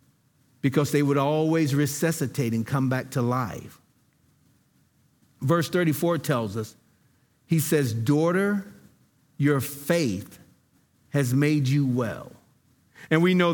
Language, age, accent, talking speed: English, 50-69, American, 115 wpm